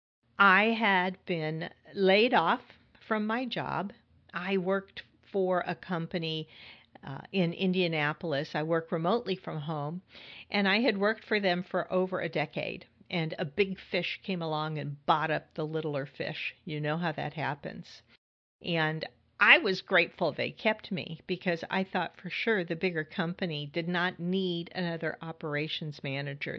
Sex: female